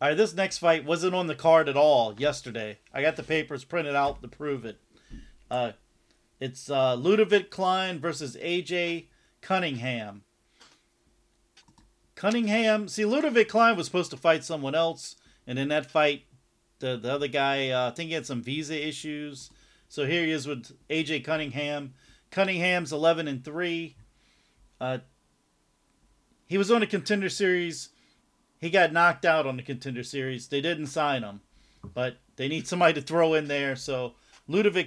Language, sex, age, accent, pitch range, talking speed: English, male, 40-59, American, 130-175 Hz, 165 wpm